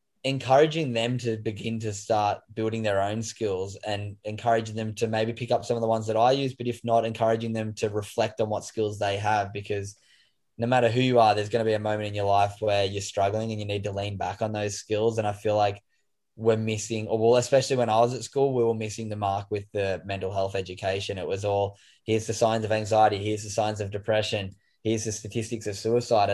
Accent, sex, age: Australian, male, 10-29